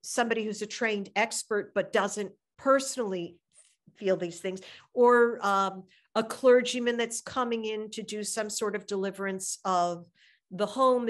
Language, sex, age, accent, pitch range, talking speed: English, female, 50-69, American, 190-245 Hz, 145 wpm